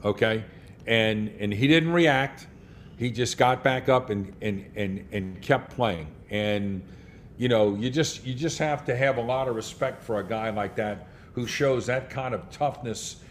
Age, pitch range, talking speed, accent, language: 50-69, 105-135 Hz, 190 wpm, American, English